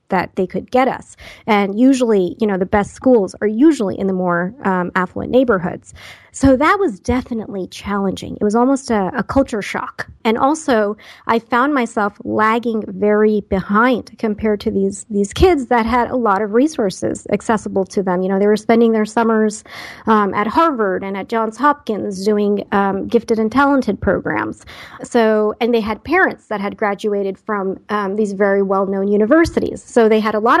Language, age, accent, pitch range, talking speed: English, 30-49, American, 205-250 Hz, 185 wpm